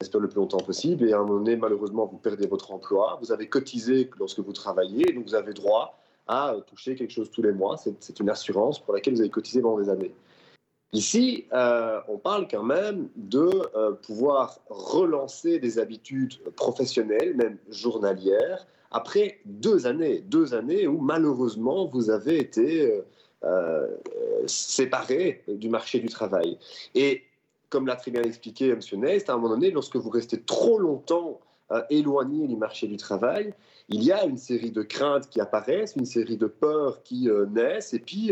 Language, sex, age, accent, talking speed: French, male, 30-49, French, 180 wpm